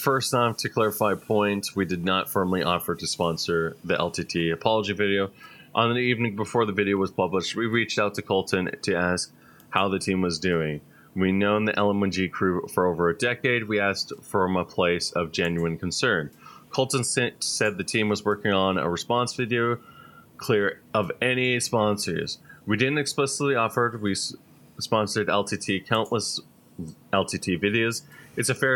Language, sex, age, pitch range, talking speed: English, male, 30-49, 95-115 Hz, 170 wpm